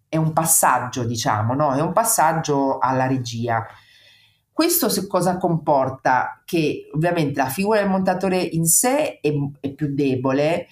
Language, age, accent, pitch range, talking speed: Italian, 40-59, native, 135-175 Hz, 135 wpm